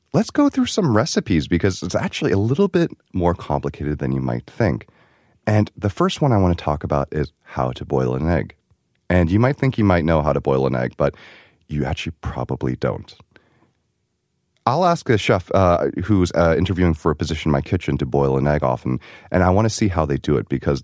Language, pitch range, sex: Korean, 70-100 Hz, male